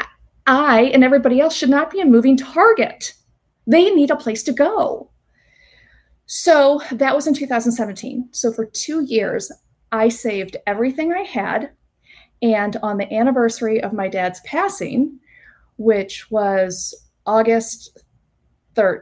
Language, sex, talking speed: English, female, 135 wpm